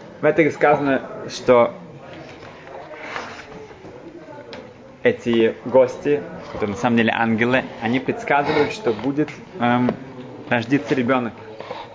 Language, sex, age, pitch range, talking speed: Russian, male, 20-39, 110-140 Hz, 90 wpm